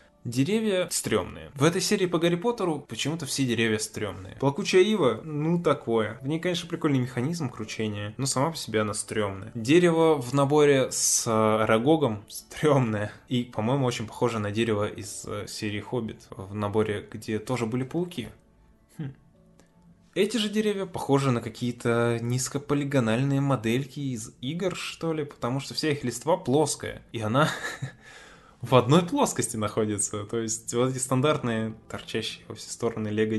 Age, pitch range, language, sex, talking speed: 10-29, 110-150 Hz, Russian, male, 155 wpm